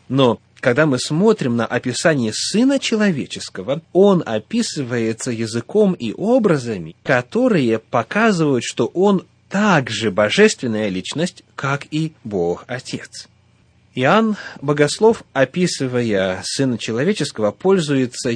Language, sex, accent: Russian, male, native